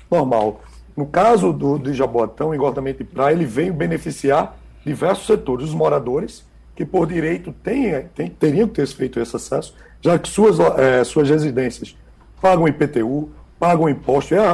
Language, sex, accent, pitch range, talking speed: Portuguese, male, Brazilian, 130-185 Hz, 160 wpm